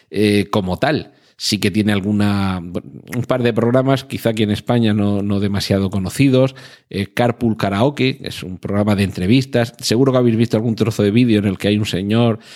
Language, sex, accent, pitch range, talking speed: Spanish, male, Spanish, 100-115 Hz, 195 wpm